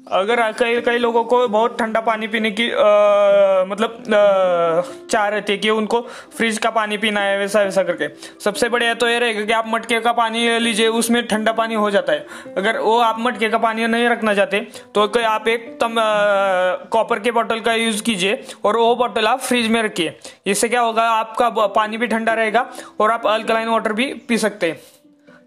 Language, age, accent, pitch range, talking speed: Hindi, 20-39, native, 210-235 Hz, 200 wpm